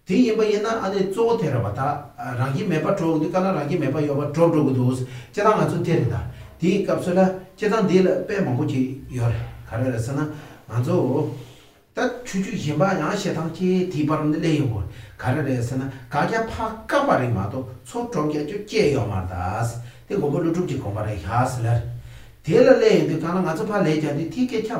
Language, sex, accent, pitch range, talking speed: English, male, Indian, 125-185 Hz, 35 wpm